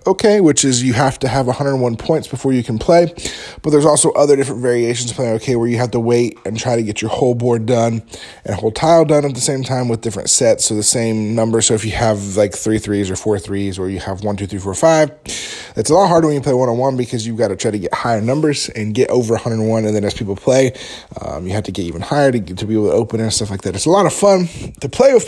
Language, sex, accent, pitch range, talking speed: English, male, American, 115-150 Hz, 285 wpm